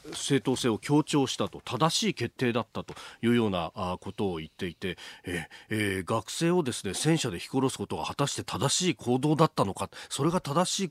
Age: 40-59